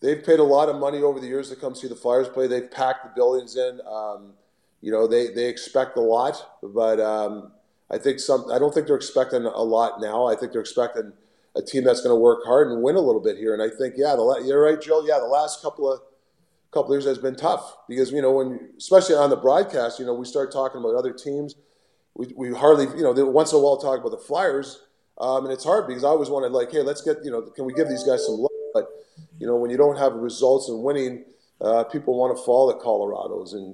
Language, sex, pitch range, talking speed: English, male, 125-190 Hz, 260 wpm